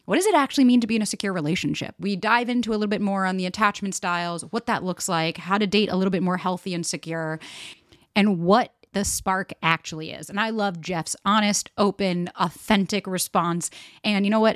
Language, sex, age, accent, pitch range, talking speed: English, female, 30-49, American, 175-220 Hz, 225 wpm